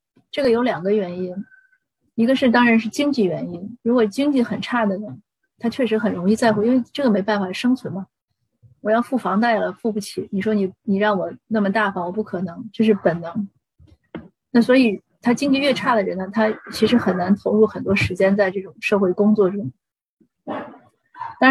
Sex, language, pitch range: female, Chinese, 195-240 Hz